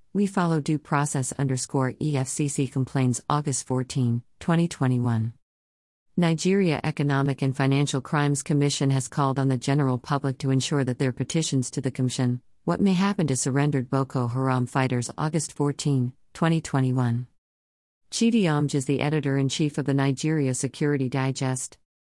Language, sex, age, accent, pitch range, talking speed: English, female, 50-69, American, 130-155 Hz, 140 wpm